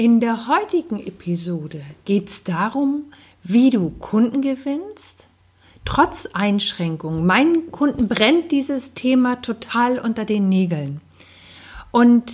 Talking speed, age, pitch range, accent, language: 110 wpm, 50-69, 205-265 Hz, German, German